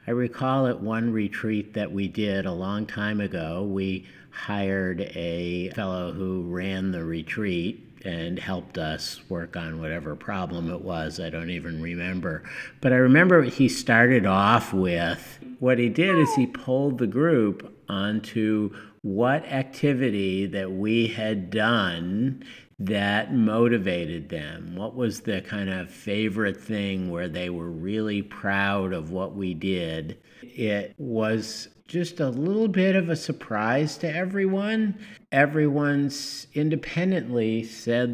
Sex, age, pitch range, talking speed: male, 50-69, 95-125 Hz, 140 wpm